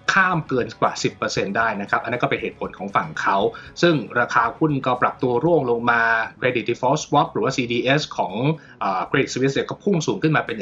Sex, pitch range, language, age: male, 125-165 Hz, Thai, 20-39